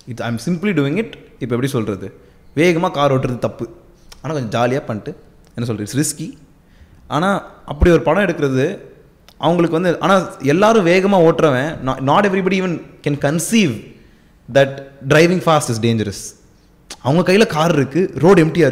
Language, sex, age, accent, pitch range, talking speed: Tamil, male, 20-39, native, 115-170 Hz, 145 wpm